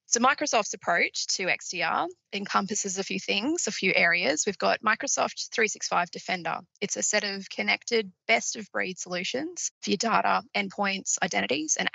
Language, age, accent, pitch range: English, 20-39, Australian, 185-230 Hz